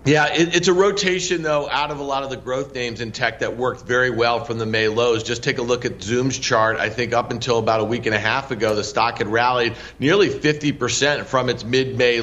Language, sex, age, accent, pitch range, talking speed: English, male, 40-59, American, 125-150 Hz, 250 wpm